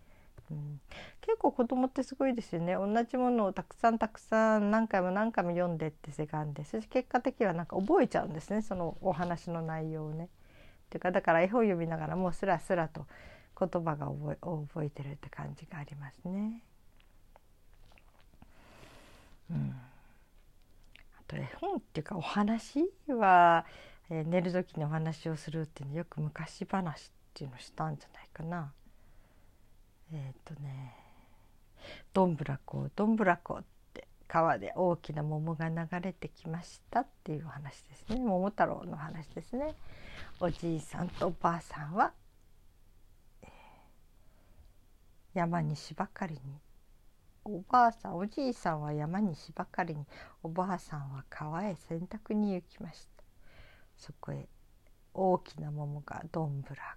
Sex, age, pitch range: female, 40-59, 140-190 Hz